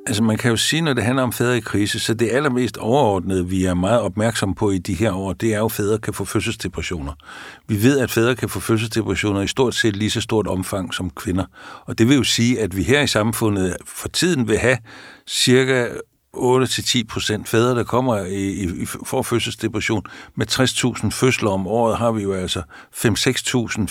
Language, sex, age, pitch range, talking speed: Danish, male, 60-79, 100-125 Hz, 205 wpm